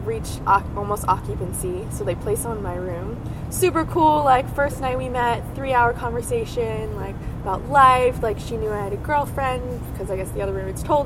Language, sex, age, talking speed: English, female, 20-39, 195 wpm